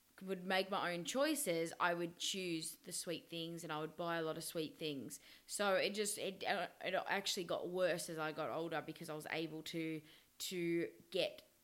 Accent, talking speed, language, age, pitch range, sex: Australian, 200 wpm, English, 20-39, 165-195 Hz, female